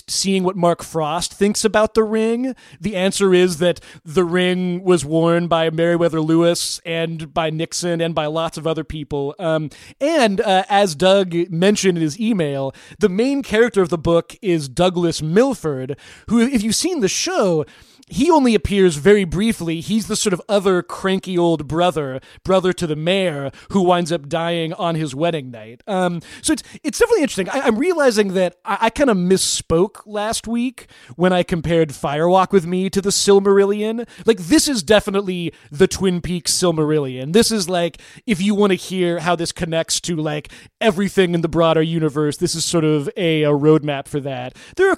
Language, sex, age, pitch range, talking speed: English, male, 30-49, 160-205 Hz, 185 wpm